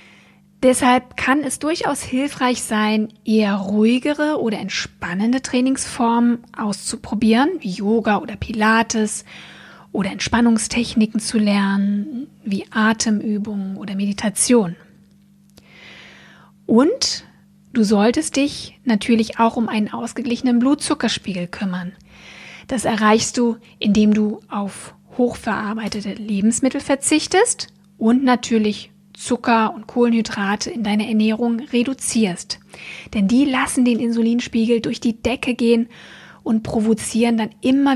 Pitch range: 215-245 Hz